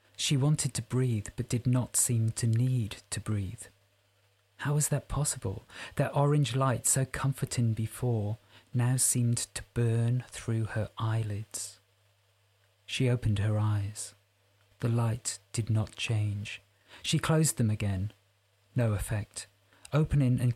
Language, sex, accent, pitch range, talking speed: English, male, British, 105-125 Hz, 135 wpm